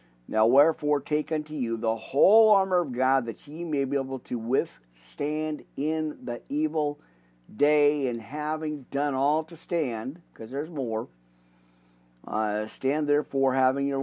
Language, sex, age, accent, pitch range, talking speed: English, male, 50-69, American, 100-150 Hz, 150 wpm